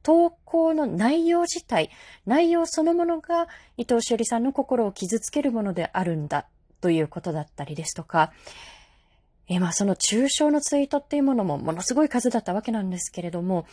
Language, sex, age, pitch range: Japanese, female, 20-39, 190-300 Hz